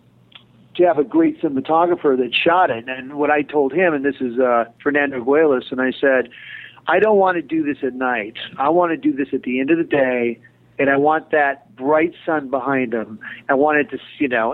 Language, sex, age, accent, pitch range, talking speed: English, male, 50-69, American, 130-155 Hz, 225 wpm